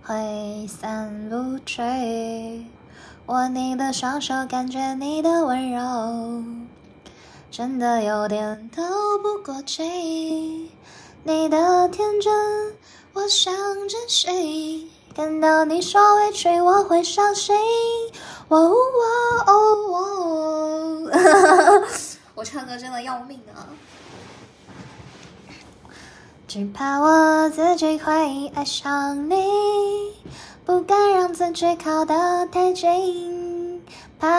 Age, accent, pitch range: 10-29, native, 260-360 Hz